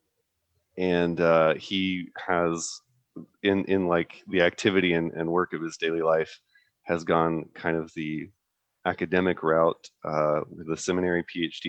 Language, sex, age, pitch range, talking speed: English, male, 30-49, 80-100 Hz, 145 wpm